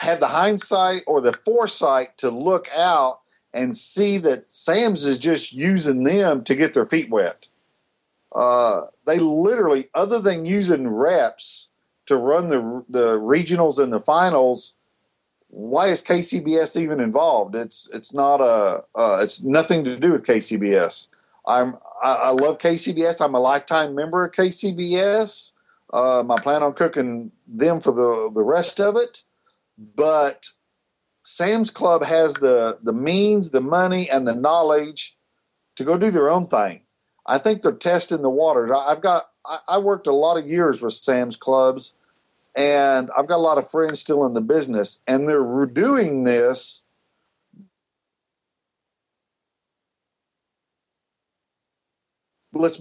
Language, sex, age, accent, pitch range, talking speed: English, male, 50-69, American, 130-195 Hz, 145 wpm